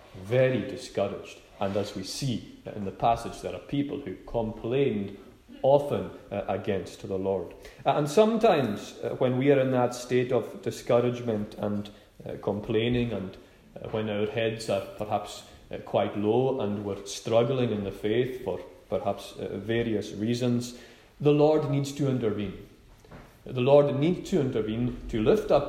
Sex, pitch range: male, 105-130 Hz